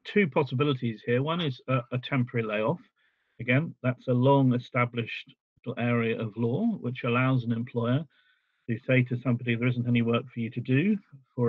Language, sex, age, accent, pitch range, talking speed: English, male, 50-69, British, 120-135 Hz, 180 wpm